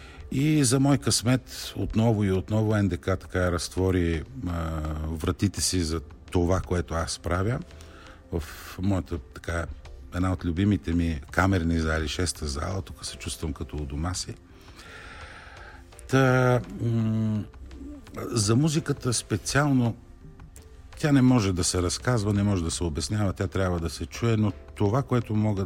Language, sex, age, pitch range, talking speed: Bulgarian, male, 50-69, 85-105 Hz, 145 wpm